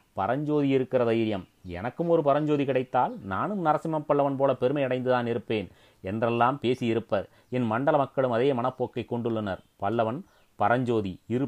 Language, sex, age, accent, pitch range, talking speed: Tamil, male, 30-49, native, 110-135 Hz, 130 wpm